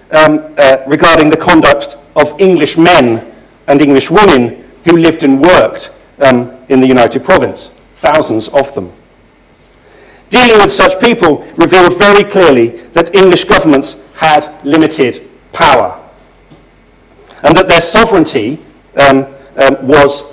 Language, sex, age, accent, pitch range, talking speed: English, male, 50-69, British, 145-185 Hz, 125 wpm